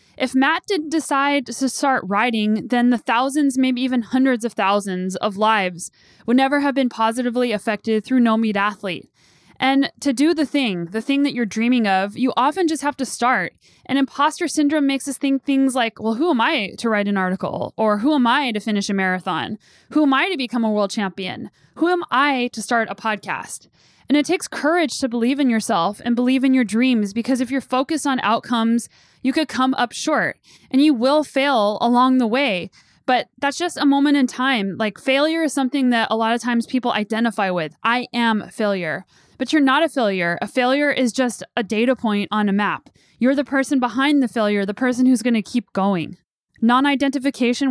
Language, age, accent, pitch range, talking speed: English, 10-29, American, 220-275 Hz, 210 wpm